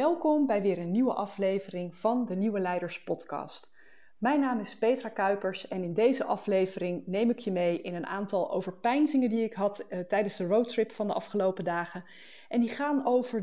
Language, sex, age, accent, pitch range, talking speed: Dutch, female, 20-39, Dutch, 180-235 Hz, 190 wpm